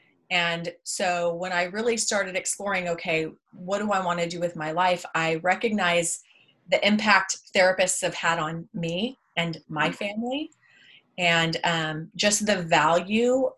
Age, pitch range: 30-49, 165-205 Hz